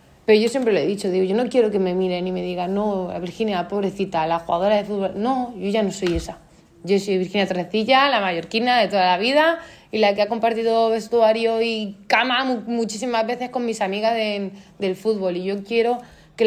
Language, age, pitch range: Spanish, 20-39, 180-220 Hz